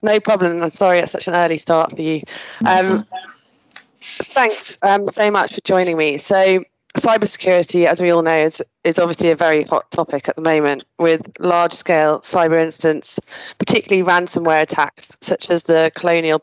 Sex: female